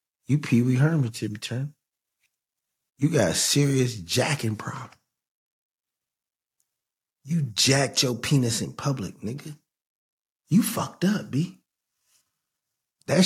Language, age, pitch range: English, 50-69, 120-155 Hz